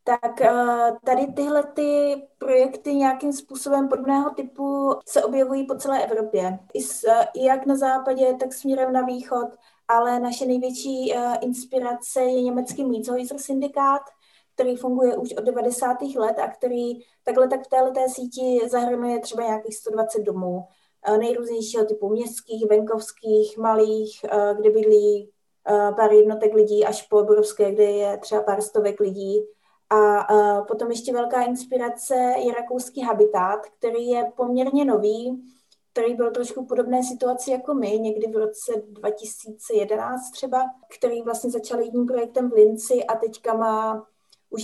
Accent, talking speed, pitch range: native, 135 wpm, 215-255 Hz